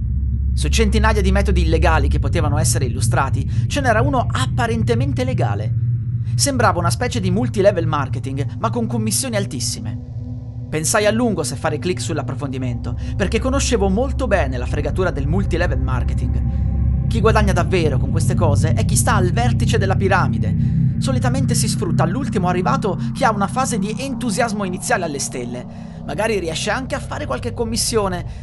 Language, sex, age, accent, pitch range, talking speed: Italian, male, 30-49, native, 105-125 Hz, 155 wpm